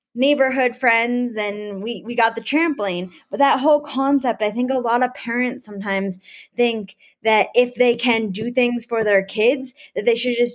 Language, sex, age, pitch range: English, female, 20-39, 200-255 Hz